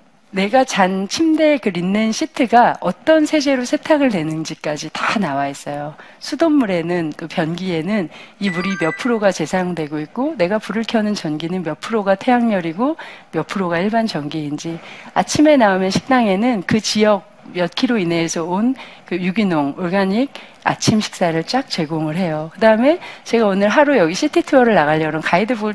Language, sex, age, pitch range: Korean, female, 40-59, 170-255 Hz